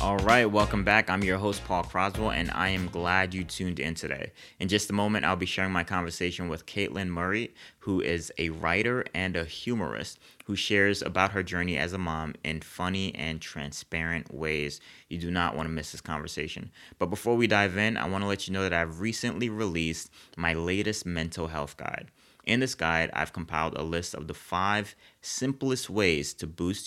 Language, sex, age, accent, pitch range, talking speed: English, male, 30-49, American, 80-100 Hz, 200 wpm